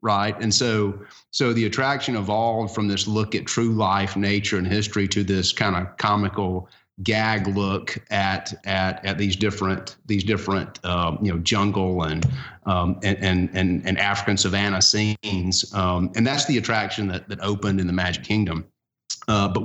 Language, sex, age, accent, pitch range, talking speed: English, male, 30-49, American, 95-115 Hz, 175 wpm